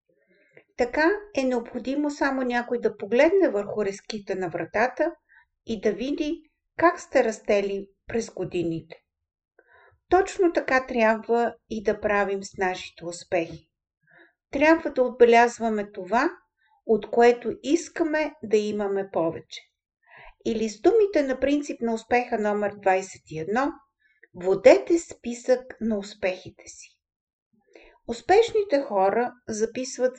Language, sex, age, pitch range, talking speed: Bulgarian, female, 50-69, 200-285 Hz, 110 wpm